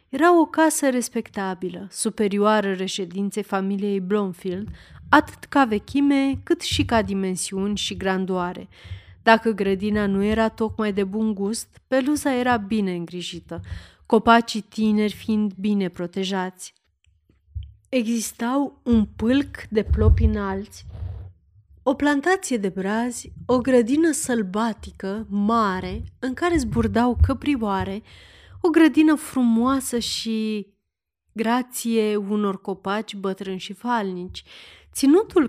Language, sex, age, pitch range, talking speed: Romanian, female, 30-49, 195-245 Hz, 105 wpm